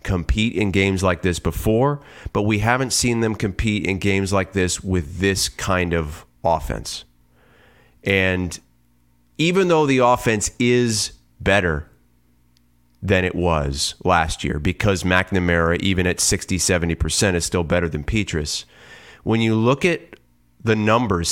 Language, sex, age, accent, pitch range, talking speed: English, male, 30-49, American, 85-110 Hz, 140 wpm